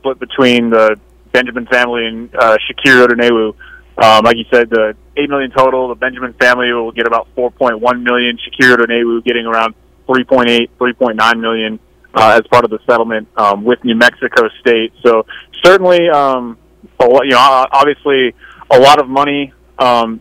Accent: American